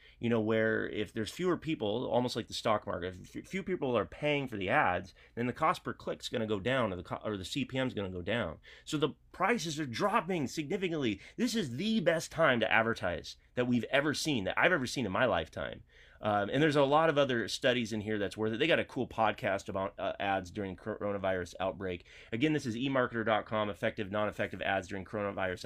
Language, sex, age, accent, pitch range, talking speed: English, male, 30-49, American, 105-145 Hz, 220 wpm